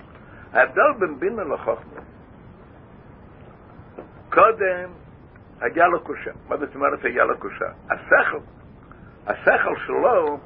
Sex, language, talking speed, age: male, Hebrew, 105 wpm, 60-79